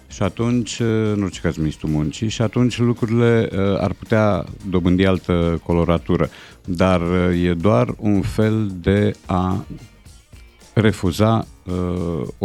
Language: Romanian